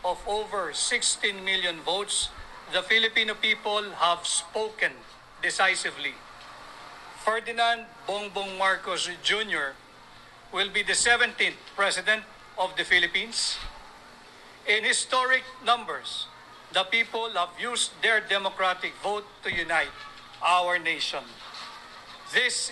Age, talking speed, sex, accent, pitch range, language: 50-69, 100 wpm, male, Filipino, 185-230 Hz, English